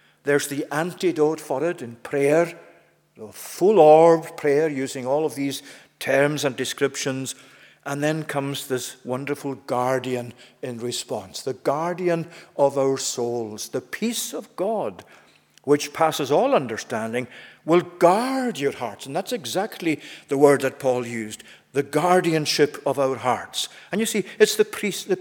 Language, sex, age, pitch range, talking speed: English, male, 50-69, 140-175 Hz, 145 wpm